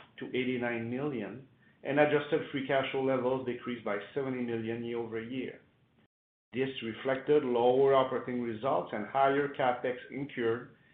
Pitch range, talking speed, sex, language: 120-150 Hz, 130 wpm, male, English